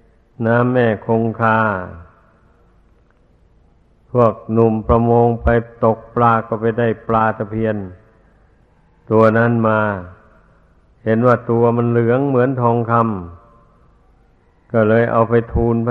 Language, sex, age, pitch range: Thai, male, 60-79, 105-115 Hz